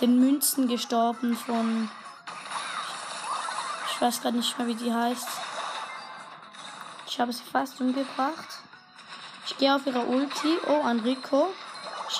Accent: German